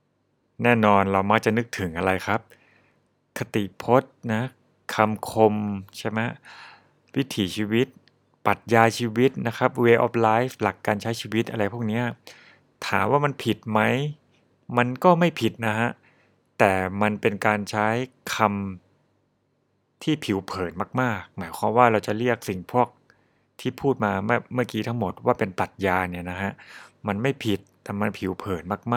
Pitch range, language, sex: 100-125 Hz, Thai, male